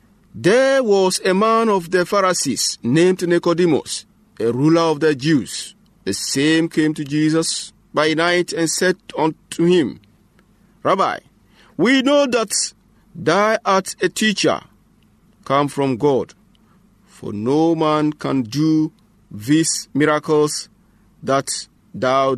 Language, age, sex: English, 50-69, male